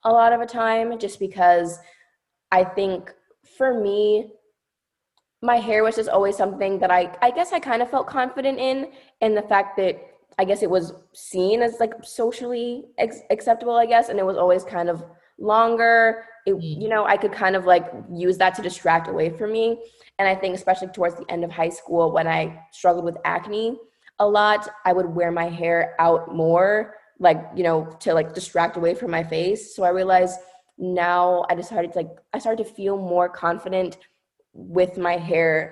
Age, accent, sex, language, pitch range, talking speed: 20-39, American, female, English, 175-220 Hz, 195 wpm